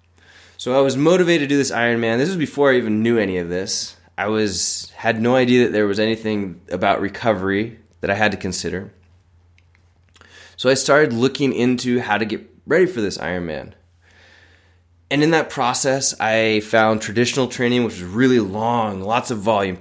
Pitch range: 95-125 Hz